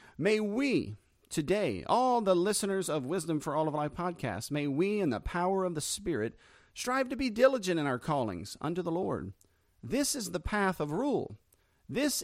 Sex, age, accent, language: male, 40-59, American, English